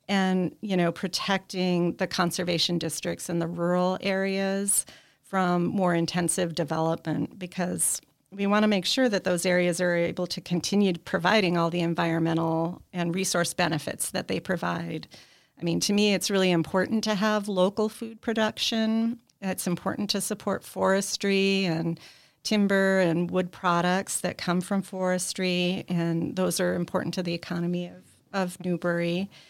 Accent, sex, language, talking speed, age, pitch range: American, female, English, 150 wpm, 40-59, 175-200 Hz